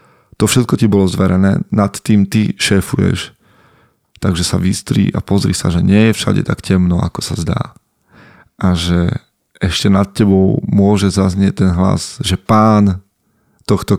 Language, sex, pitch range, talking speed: Slovak, male, 95-110 Hz, 155 wpm